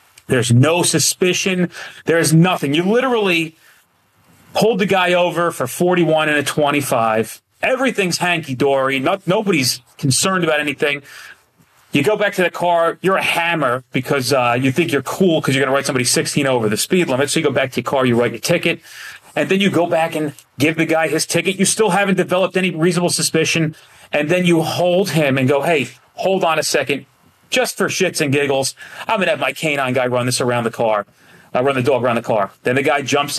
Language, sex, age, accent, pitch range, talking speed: English, male, 30-49, American, 125-170 Hz, 210 wpm